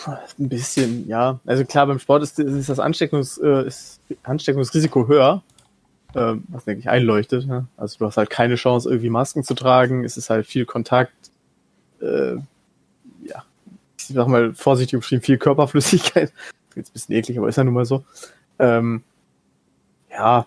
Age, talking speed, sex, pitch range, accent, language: 20-39, 160 wpm, male, 120-140 Hz, German, German